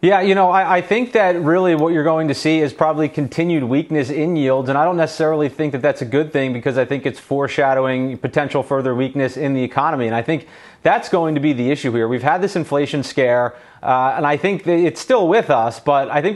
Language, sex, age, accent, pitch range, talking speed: English, male, 30-49, American, 135-165 Hz, 240 wpm